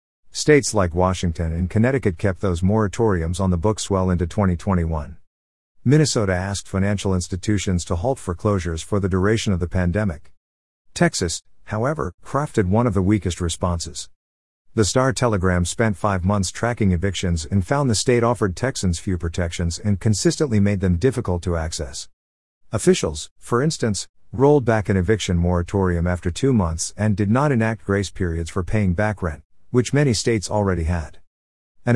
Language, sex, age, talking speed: English, male, 50-69, 160 wpm